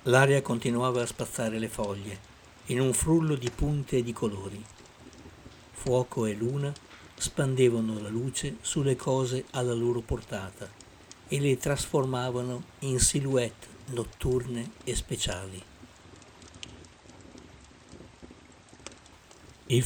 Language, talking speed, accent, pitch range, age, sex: Italian, 105 wpm, native, 110-130 Hz, 60-79, male